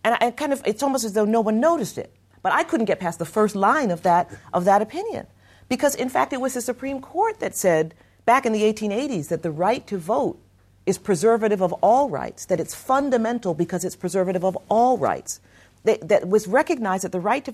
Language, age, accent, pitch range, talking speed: English, 40-59, American, 140-225 Hz, 225 wpm